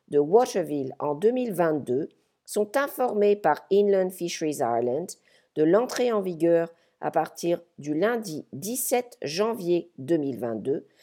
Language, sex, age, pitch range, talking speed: English, female, 50-69, 155-230 Hz, 115 wpm